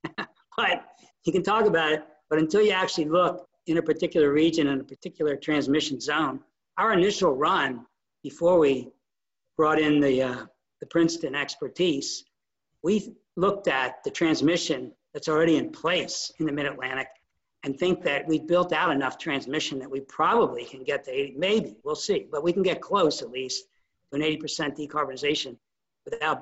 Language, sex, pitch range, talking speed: English, male, 145-180 Hz, 170 wpm